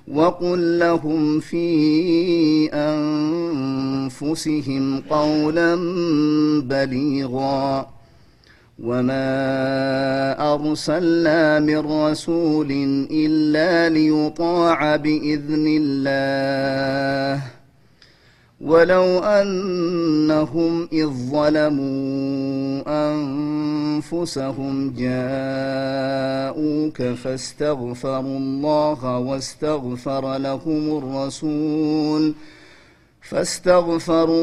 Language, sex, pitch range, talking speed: Amharic, male, 135-155 Hz, 45 wpm